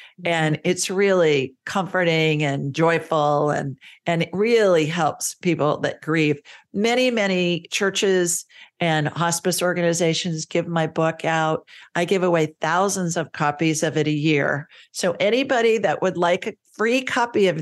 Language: English